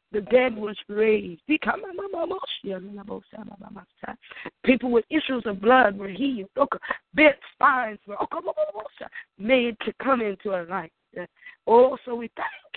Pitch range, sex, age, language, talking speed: 205-265 Hz, female, 20-39, English, 110 wpm